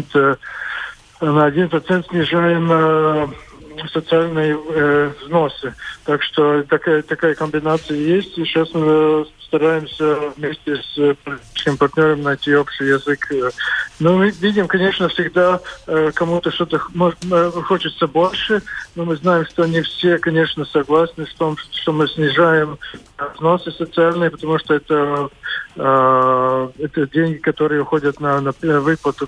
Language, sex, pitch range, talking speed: Russian, male, 145-160 Hz, 125 wpm